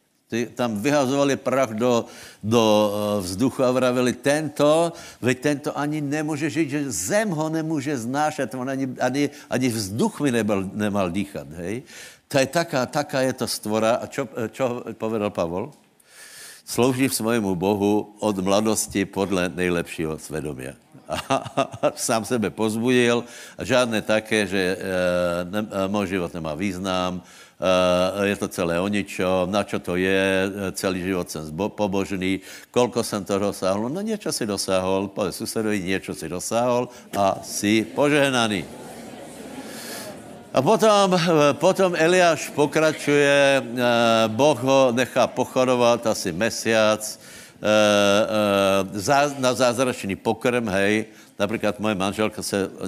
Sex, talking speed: male, 135 wpm